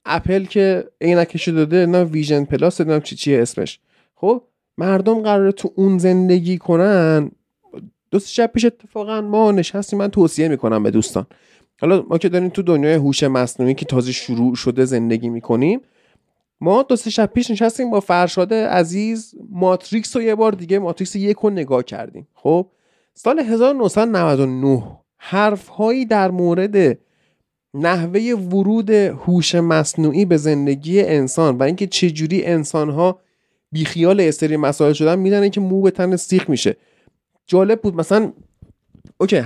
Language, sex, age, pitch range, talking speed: Persian, male, 30-49, 145-195 Hz, 145 wpm